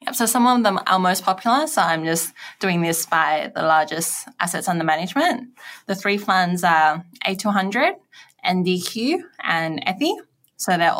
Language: English